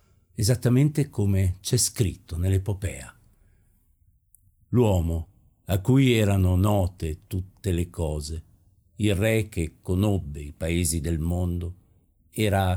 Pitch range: 85-105 Hz